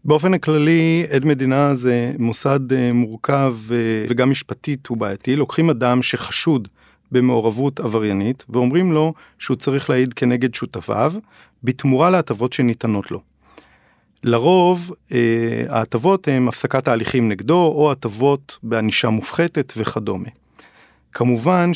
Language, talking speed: Hebrew, 110 wpm